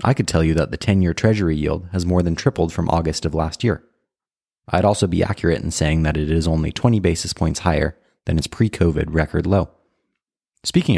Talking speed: 210 wpm